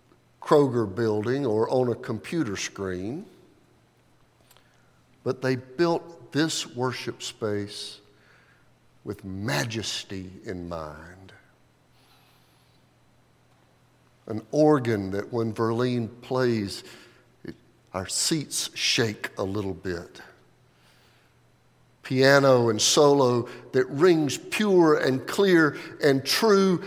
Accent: American